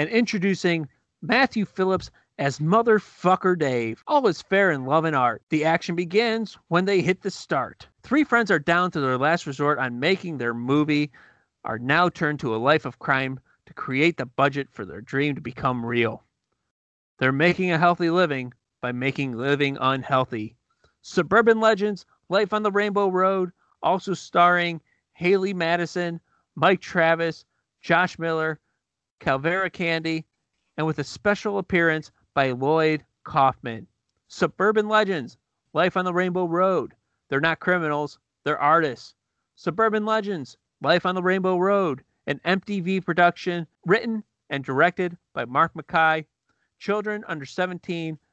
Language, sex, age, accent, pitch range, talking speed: English, male, 30-49, American, 140-185 Hz, 145 wpm